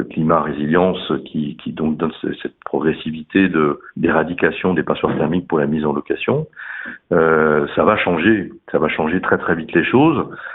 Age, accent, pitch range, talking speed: 60-79, French, 80-105 Hz, 165 wpm